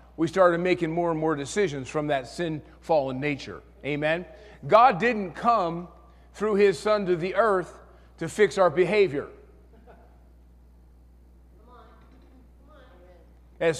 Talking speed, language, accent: 115 wpm, English, American